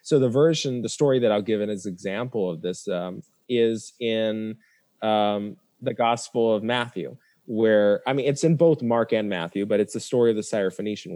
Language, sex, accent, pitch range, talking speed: English, male, American, 105-135 Hz, 200 wpm